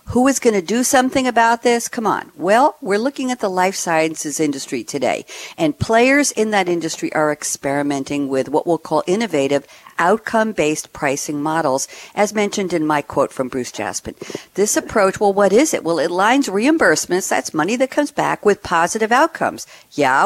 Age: 60-79